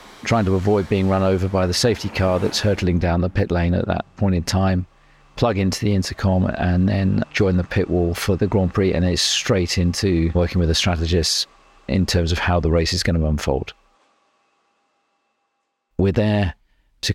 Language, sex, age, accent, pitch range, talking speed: English, male, 50-69, British, 85-100 Hz, 195 wpm